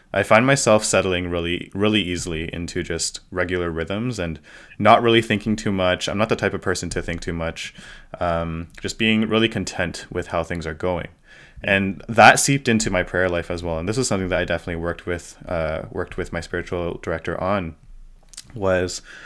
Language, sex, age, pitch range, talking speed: English, male, 20-39, 85-100 Hz, 195 wpm